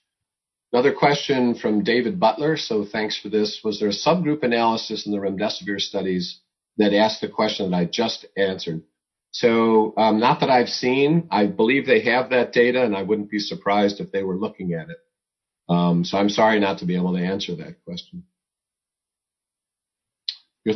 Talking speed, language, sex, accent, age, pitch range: 180 wpm, English, male, American, 50-69, 100-120 Hz